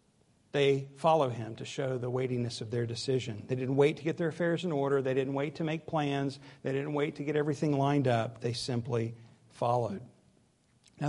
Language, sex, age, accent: English, male, 50-69, American